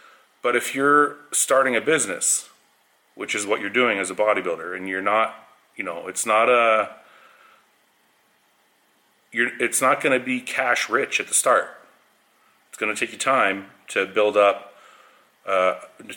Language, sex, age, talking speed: English, male, 30-49, 155 wpm